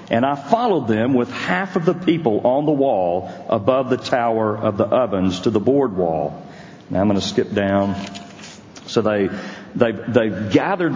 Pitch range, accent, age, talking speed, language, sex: 110-160 Hz, American, 50-69, 175 wpm, English, male